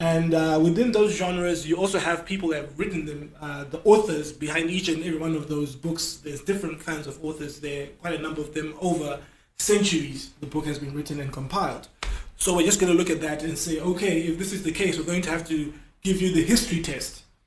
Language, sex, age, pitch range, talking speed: English, male, 20-39, 155-180 Hz, 240 wpm